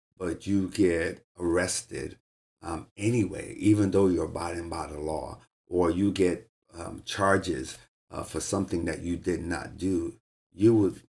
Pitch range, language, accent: 85-105 Hz, English, American